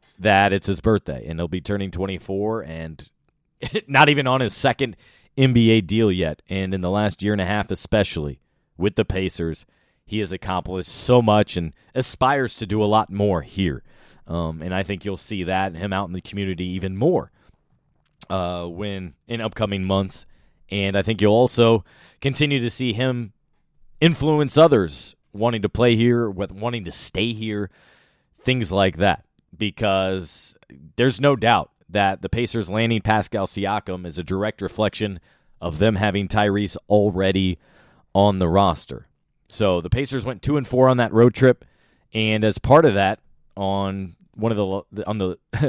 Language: English